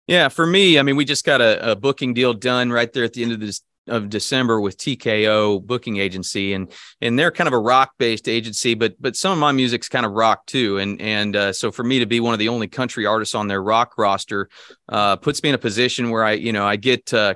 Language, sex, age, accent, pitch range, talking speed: English, male, 30-49, American, 105-120 Hz, 265 wpm